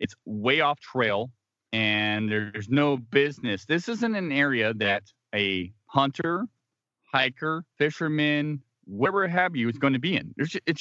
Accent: American